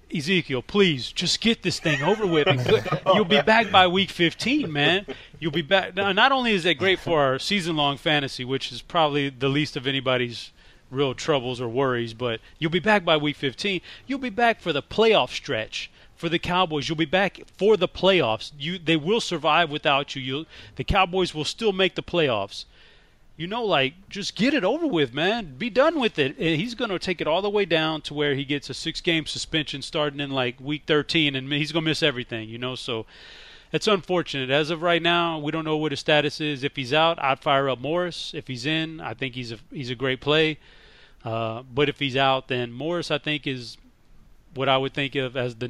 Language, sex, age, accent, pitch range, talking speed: English, male, 30-49, American, 130-175 Hz, 215 wpm